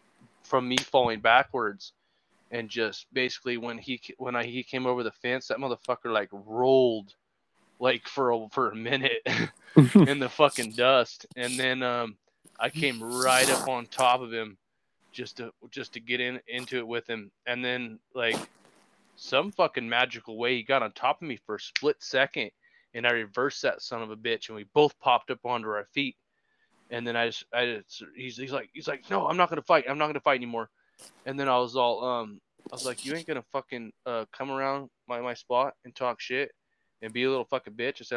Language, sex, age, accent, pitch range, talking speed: English, male, 20-39, American, 115-130 Hz, 215 wpm